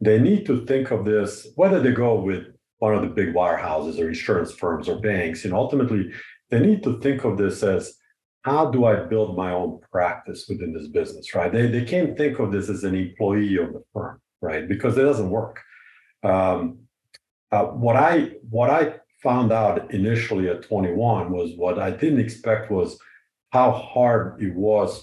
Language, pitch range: English, 95-125 Hz